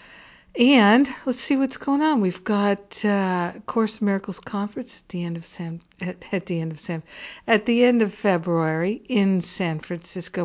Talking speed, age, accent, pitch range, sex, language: 185 wpm, 60-79, American, 170-205 Hz, female, English